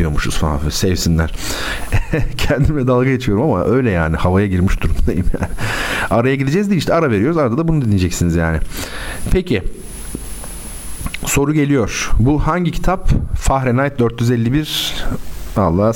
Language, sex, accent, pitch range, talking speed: Turkish, male, native, 105-160 Hz, 125 wpm